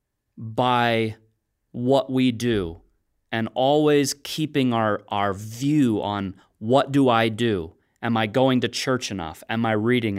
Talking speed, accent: 140 wpm, American